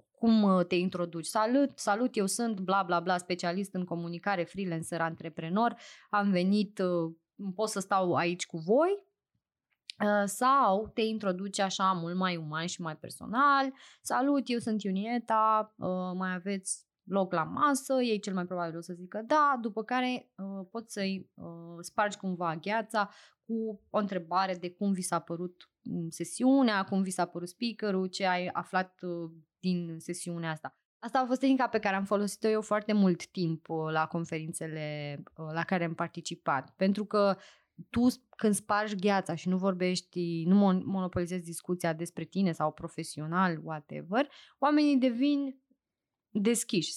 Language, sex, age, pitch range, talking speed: Romanian, female, 20-39, 175-220 Hz, 145 wpm